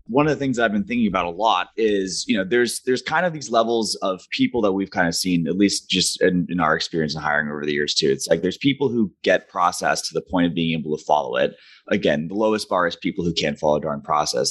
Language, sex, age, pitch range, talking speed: English, male, 30-49, 80-105 Hz, 280 wpm